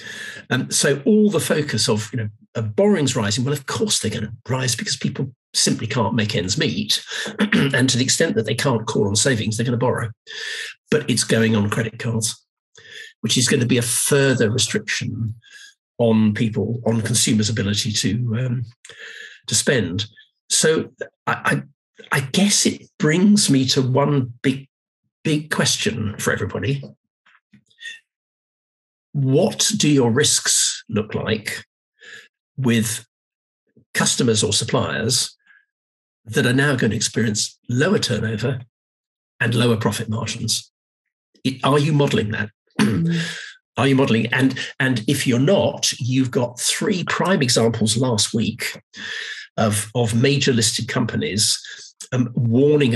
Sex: male